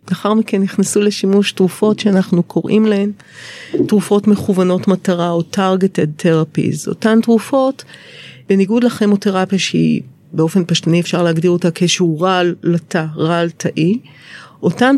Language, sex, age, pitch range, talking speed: Hebrew, female, 40-59, 175-215 Hz, 125 wpm